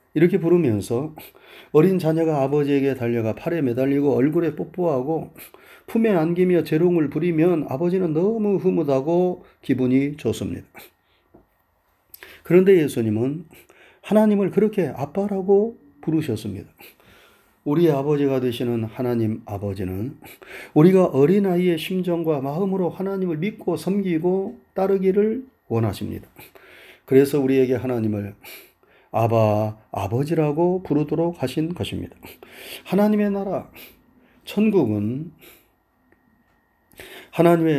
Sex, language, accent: male, Korean, native